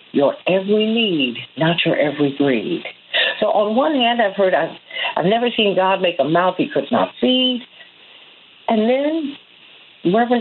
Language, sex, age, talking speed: English, female, 50-69, 160 wpm